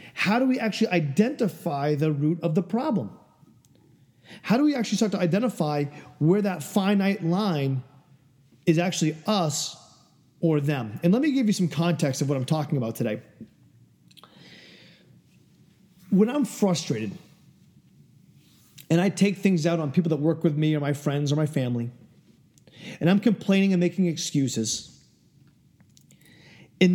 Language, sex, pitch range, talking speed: English, male, 145-205 Hz, 145 wpm